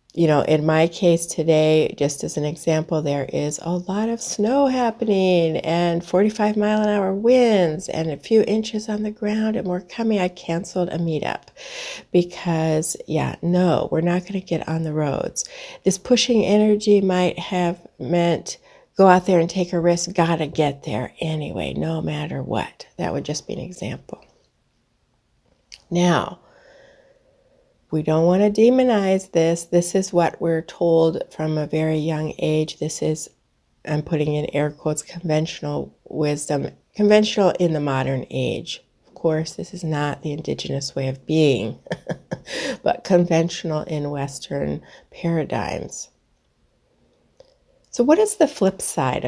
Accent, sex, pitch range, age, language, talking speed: American, female, 155-205 Hz, 60-79, English, 150 wpm